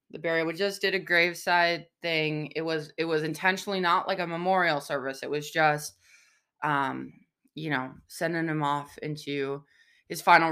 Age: 20-39